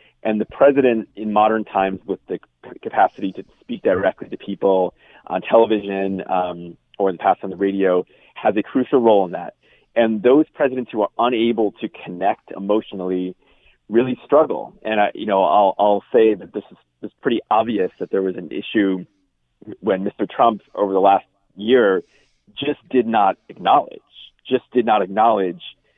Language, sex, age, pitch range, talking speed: English, male, 30-49, 95-115 Hz, 170 wpm